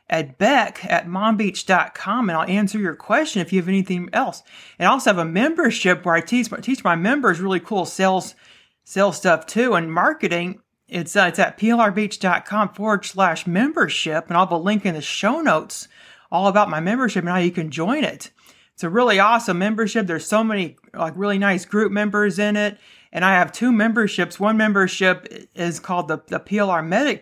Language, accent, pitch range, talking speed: English, American, 175-210 Hz, 195 wpm